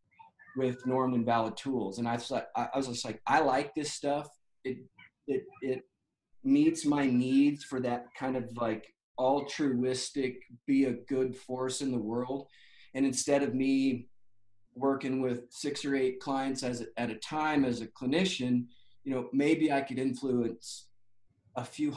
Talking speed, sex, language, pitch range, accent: 165 wpm, male, English, 120-140 Hz, American